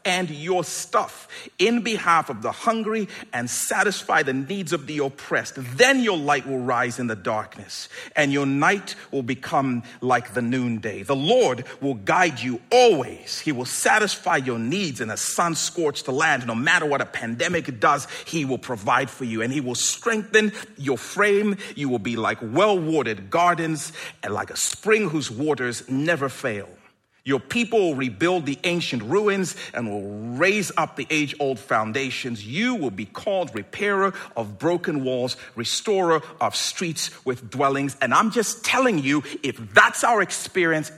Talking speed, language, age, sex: 165 wpm, English, 40-59, male